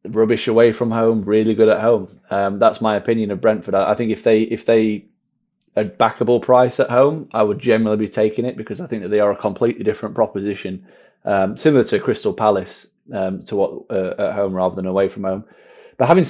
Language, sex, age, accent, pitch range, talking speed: English, male, 20-39, British, 100-130 Hz, 225 wpm